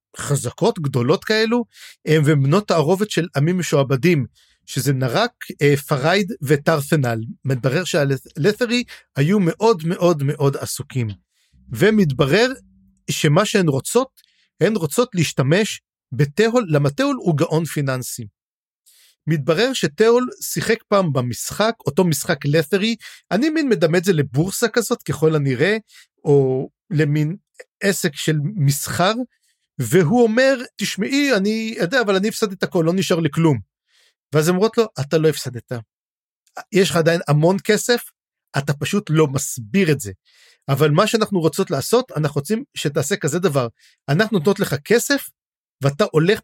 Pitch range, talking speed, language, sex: 145-210 Hz, 130 wpm, Hebrew, male